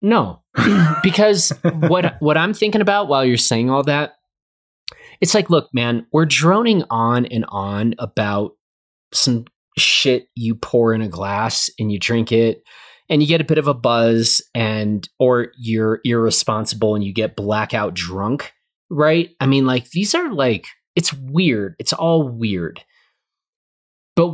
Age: 30-49